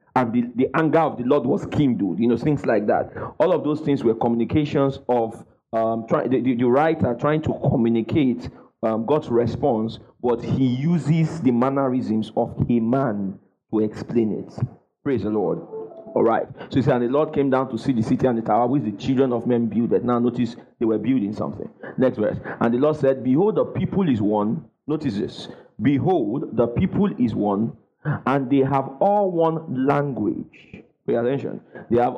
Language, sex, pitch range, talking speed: English, male, 120-155 Hz, 190 wpm